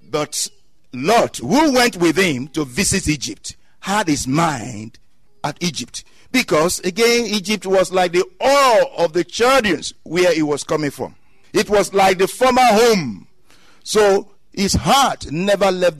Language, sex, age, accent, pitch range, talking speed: English, male, 50-69, Nigerian, 150-215 Hz, 145 wpm